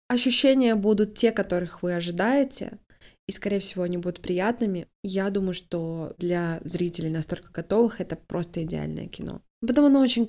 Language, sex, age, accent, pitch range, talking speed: Russian, female, 20-39, native, 175-225 Hz, 150 wpm